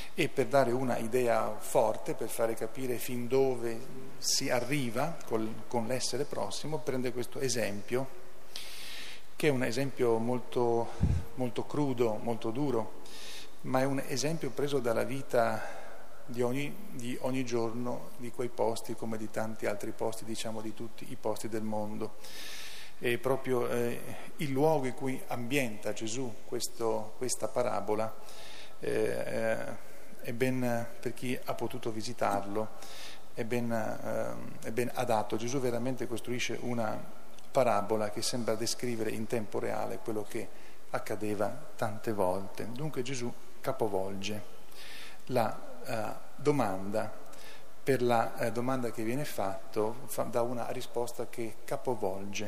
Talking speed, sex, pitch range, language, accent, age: 130 wpm, male, 110-130 Hz, Italian, native, 40-59